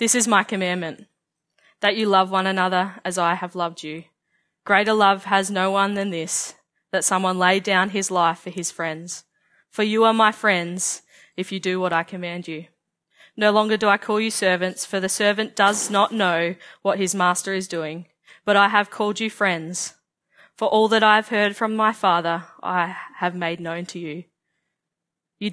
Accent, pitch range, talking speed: Australian, 175-205 Hz, 195 wpm